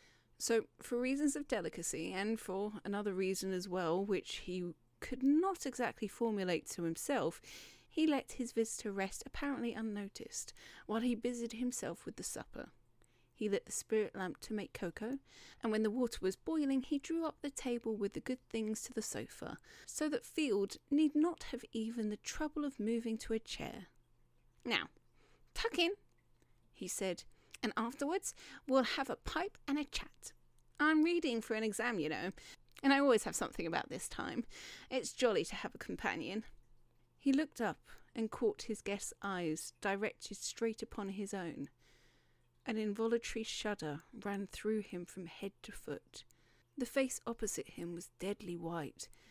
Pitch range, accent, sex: 195-255 Hz, British, female